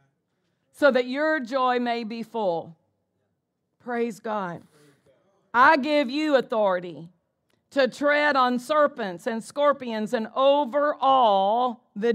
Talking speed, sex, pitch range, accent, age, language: 115 wpm, female, 215-265 Hz, American, 50-69, English